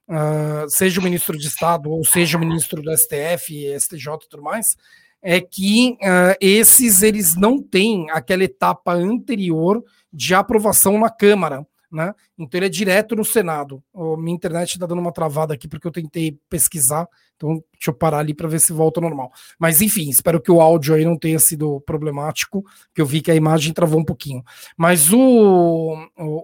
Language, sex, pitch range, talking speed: Portuguese, male, 160-205 Hz, 185 wpm